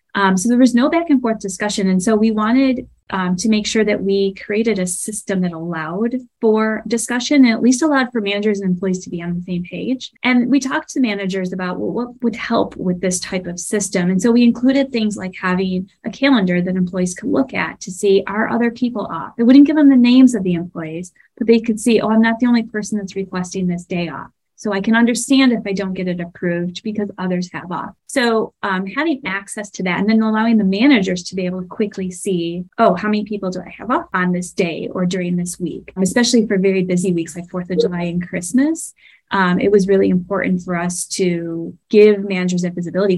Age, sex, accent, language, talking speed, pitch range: 30-49, female, American, English, 235 wpm, 185-235 Hz